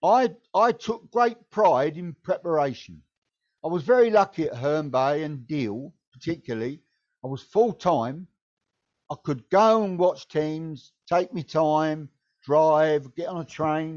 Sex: male